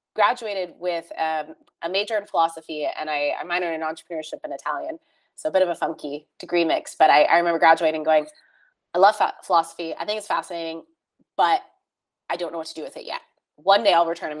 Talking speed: 215 wpm